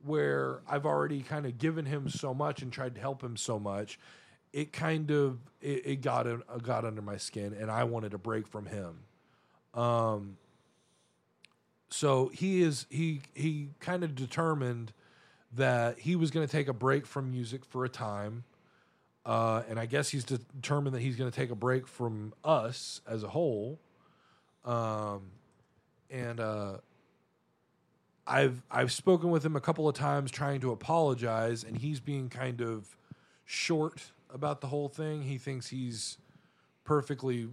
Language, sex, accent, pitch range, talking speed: English, male, American, 115-145 Hz, 165 wpm